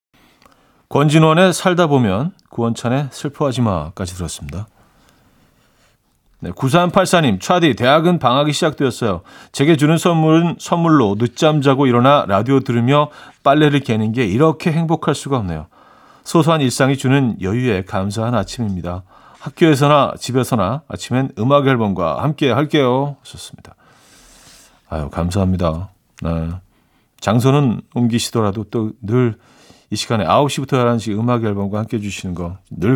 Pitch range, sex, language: 105-145 Hz, male, Korean